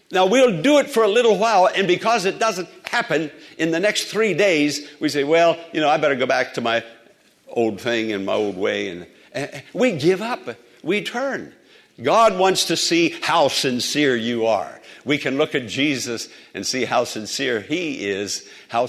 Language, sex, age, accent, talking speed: English, male, 60-79, American, 195 wpm